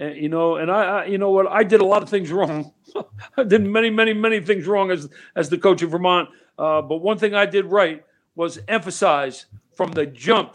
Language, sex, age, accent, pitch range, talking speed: English, male, 60-79, American, 170-215 Hz, 235 wpm